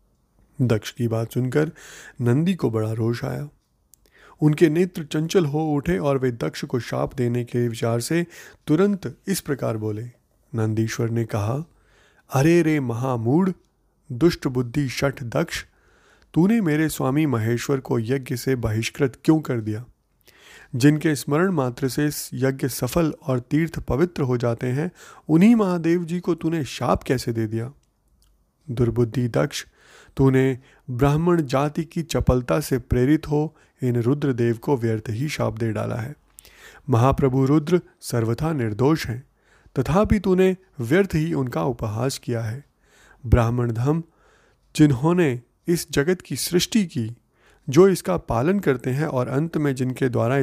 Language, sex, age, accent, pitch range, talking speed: Hindi, male, 30-49, native, 120-160 Hz, 145 wpm